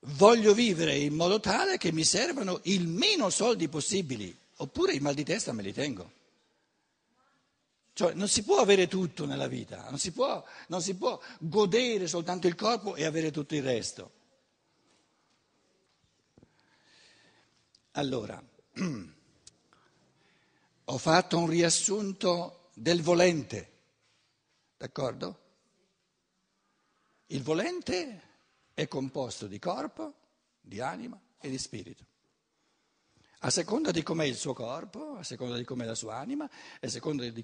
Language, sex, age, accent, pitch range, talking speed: Italian, male, 60-79, native, 145-210 Hz, 125 wpm